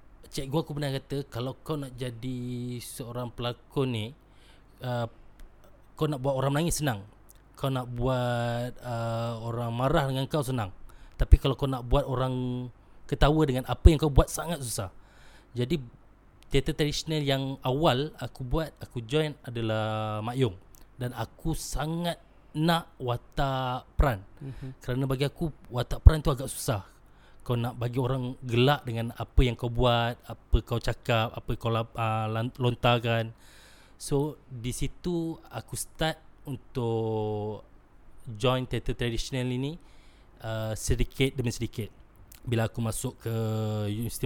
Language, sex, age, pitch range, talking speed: Malay, male, 20-39, 110-135 Hz, 140 wpm